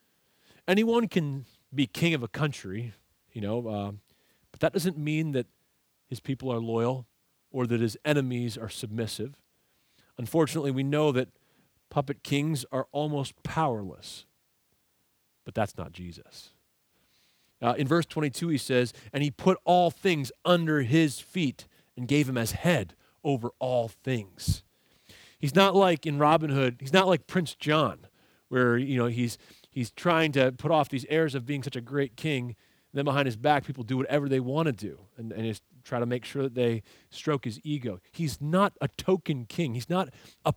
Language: English